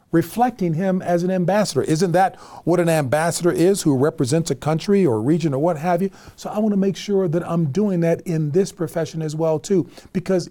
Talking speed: 210 wpm